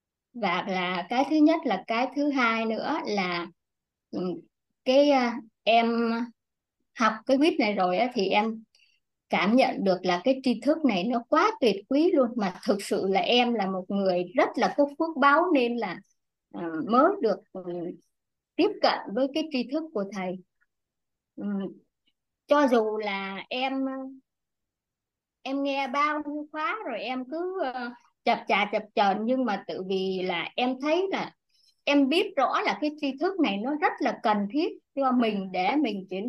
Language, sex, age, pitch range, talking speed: Vietnamese, male, 20-39, 210-300 Hz, 165 wpm